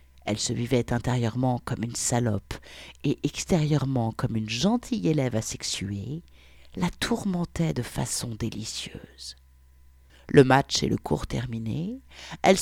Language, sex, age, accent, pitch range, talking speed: French, female, 50-69, French, 110-155 Hz, 125 wpm